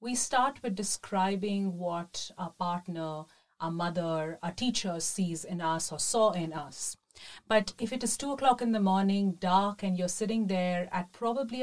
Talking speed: 175 wpm